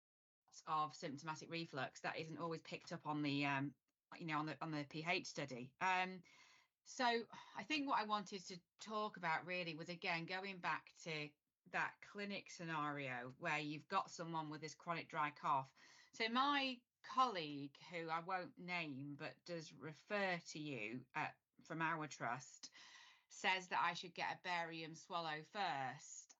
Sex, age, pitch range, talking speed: female, 30-49, 155-200 Hz, 165 wpm